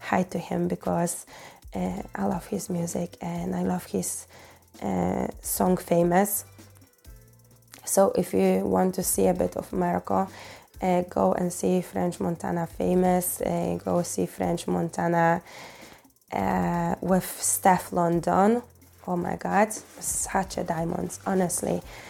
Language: English